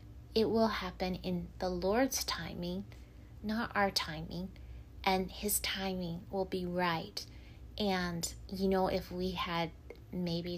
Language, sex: English, female